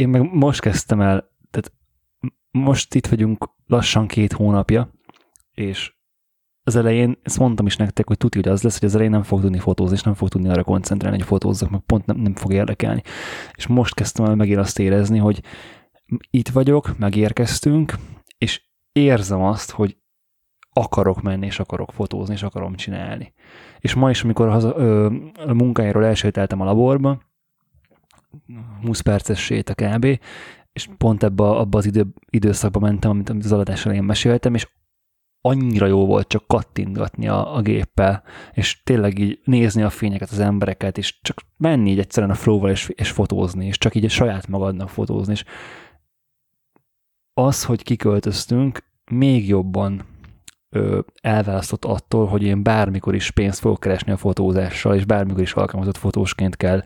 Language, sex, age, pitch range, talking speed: Hungarian, male, 20-39, 100-115 Hz, 160 wpm